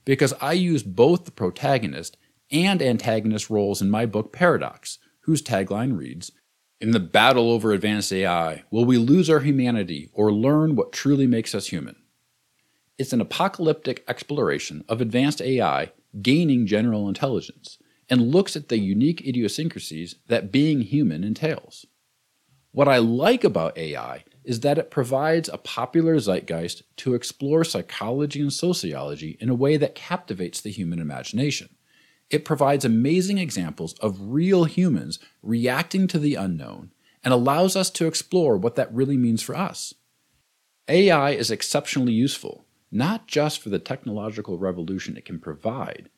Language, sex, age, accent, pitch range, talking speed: English, male, 50-69, American, 105-155 Hz, 150 wpm